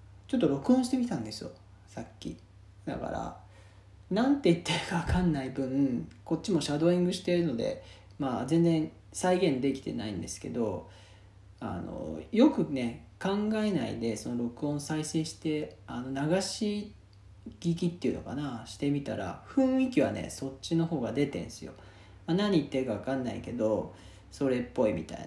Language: Japanese